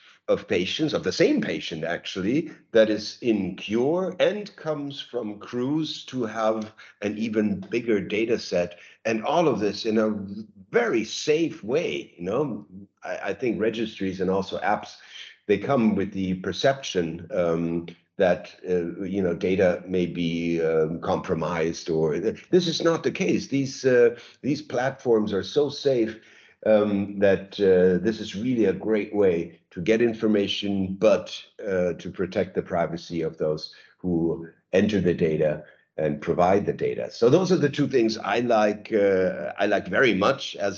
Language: English